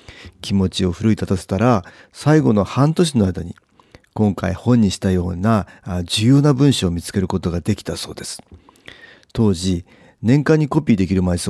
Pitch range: 95-125 Hz